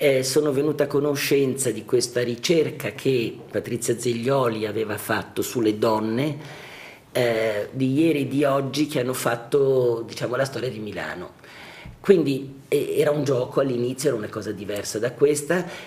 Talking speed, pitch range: 155 wpm, 110-150 Hz